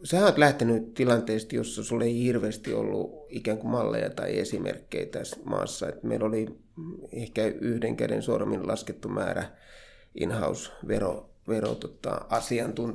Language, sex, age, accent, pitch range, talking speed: Finnish, male, 30-49, native, 110-125 Hz, 125 wpm